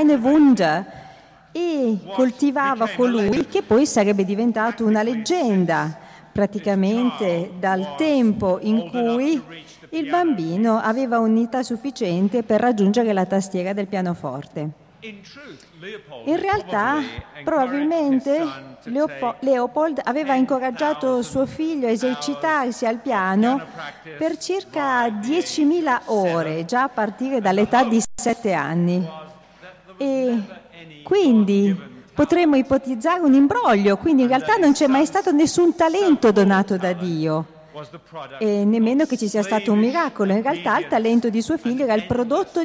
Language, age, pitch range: Italian, 40-59, 200-275 Hz